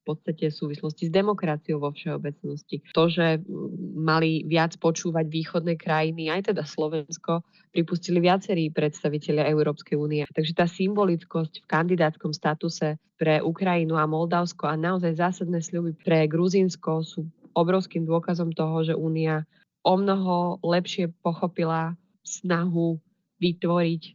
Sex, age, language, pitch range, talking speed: female, 20-39, Slovak, 155-175 Hz, 125 wpm